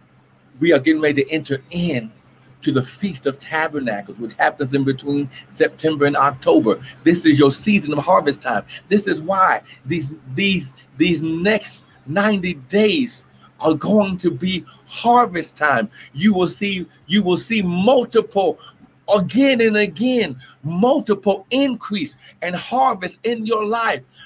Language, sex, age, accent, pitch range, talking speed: English, male, 60-79, American, 165-235 Hz, 145 wpm